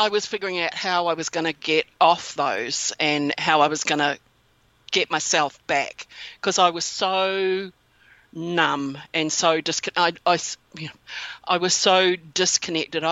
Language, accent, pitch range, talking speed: English, Australian, 150-185 Hz, 155 wpm